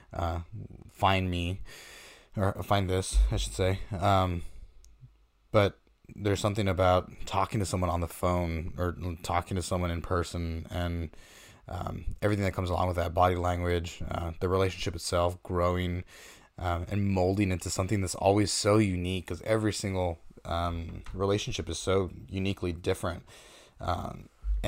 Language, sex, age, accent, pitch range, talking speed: English, male, 20-39, American, 85-100 Hz, 145 wpm